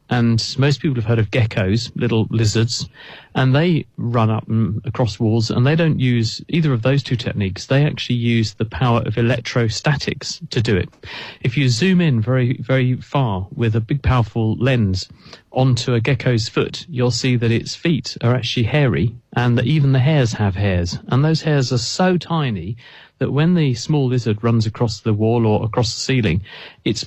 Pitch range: 115-135 Hz